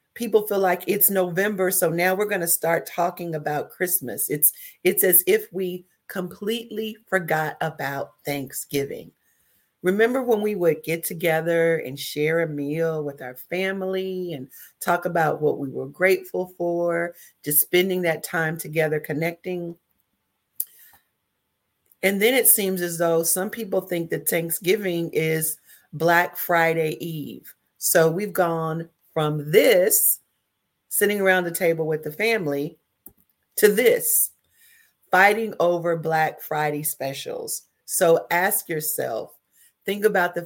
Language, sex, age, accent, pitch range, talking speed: English, female, 40-59, American, 155-190 Hz, 135 wpm